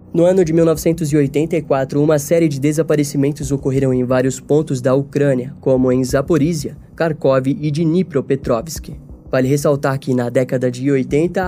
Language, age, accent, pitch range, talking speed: Portuguese, 10-29, Brazilian, 130-165 Hz, 140 wpm